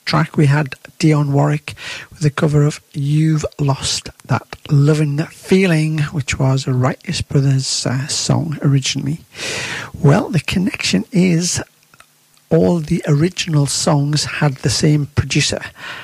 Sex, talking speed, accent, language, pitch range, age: male, 130 wpm, British, English, 135-160 Hz, 50-69